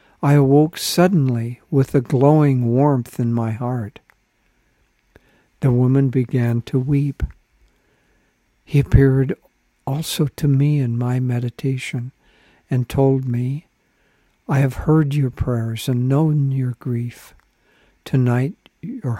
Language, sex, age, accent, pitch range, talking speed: English, male, 60-79, American, 120-140 Hz, 115 wpm